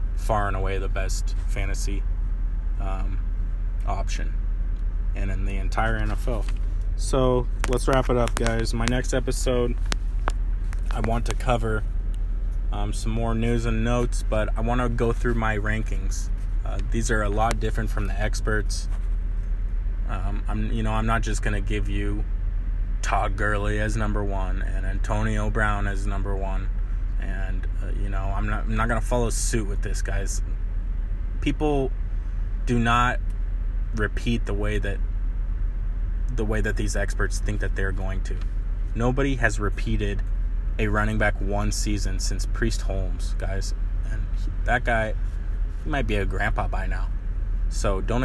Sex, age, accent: male, 20-39, American